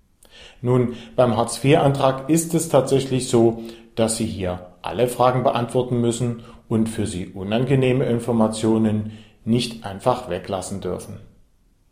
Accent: German